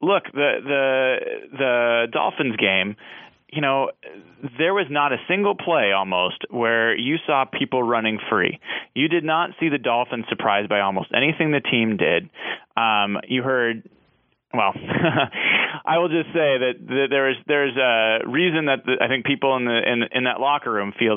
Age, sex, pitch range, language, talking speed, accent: 30-49, male, 120-155 Hz, English, 175 wpm, American